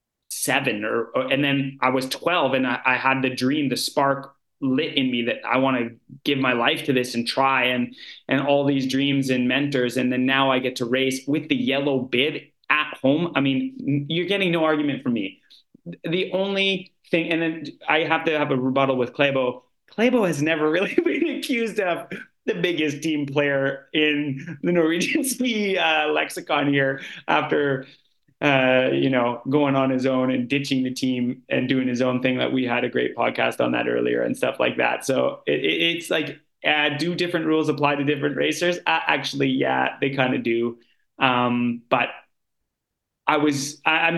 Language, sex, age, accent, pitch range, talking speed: English, male, 30-49, American, 130-155 Hz, 195 wpm